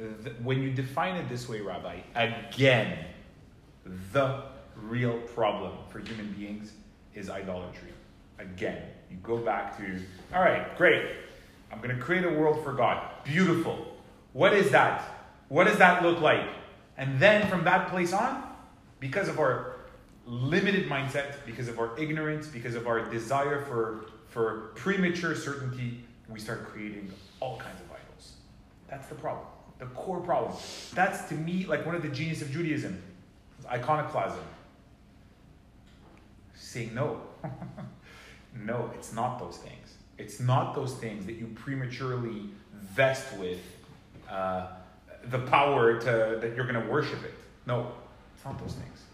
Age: 30-49